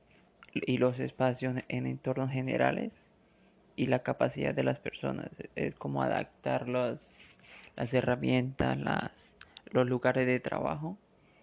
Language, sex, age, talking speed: Spanish, male, 20-39, 110 wpm